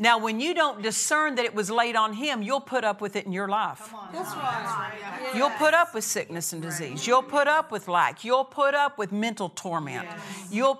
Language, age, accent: English, 50-69, American